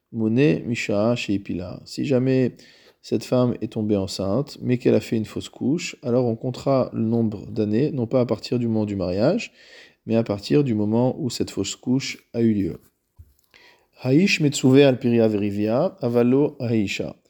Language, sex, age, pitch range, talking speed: French, male, 40-59, 105-135 Hz, 140 wpm